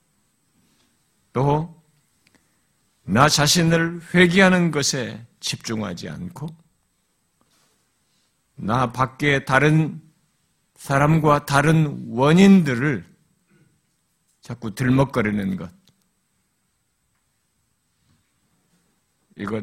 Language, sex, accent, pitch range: Korean, male, native, 115-160 Hz